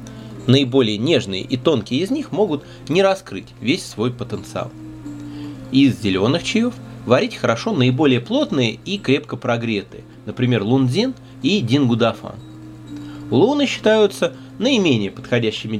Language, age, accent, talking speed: Russian, 30-49, native, 115 wpm